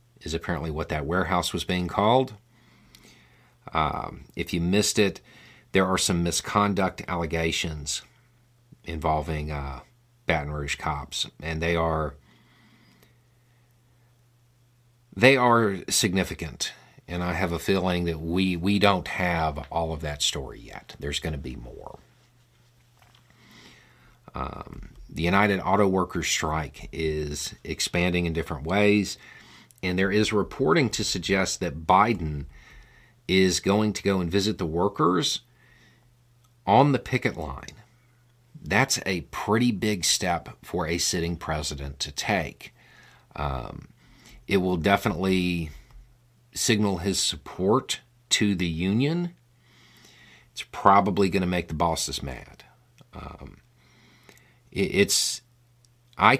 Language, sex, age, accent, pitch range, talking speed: English, male, 50-69, American, 80-120 Hz, 120 wpm